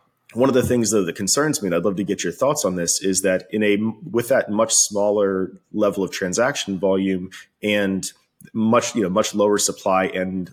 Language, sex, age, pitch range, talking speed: English, male, 30-49, 95-115 Hz, 210 wpm